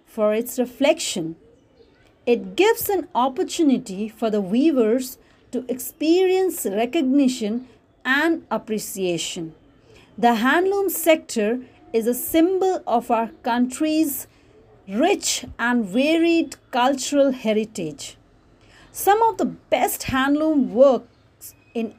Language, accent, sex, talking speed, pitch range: English, Indian, female, 100 wpm, 230-305 Hz